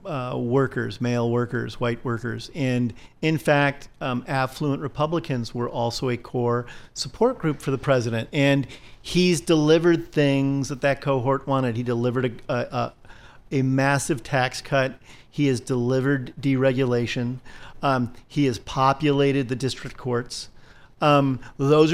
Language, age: English, 40-59